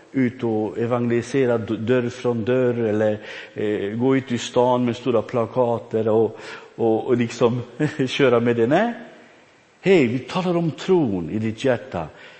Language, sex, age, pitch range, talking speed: Swedish, male, 60-79, 130-210 Hz, 150 wpm